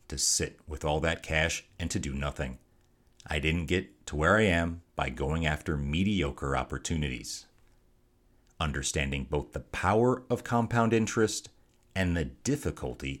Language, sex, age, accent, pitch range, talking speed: English, male, 40-59, American, 75-100 Hz, 145 wpm